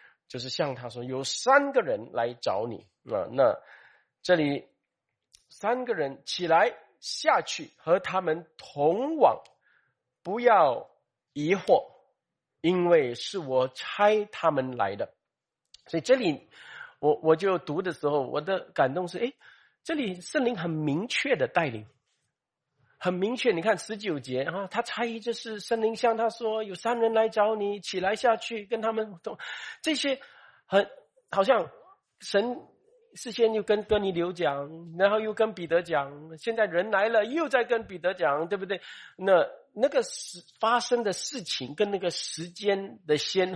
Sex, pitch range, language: male, 165-230 Hz, Chinese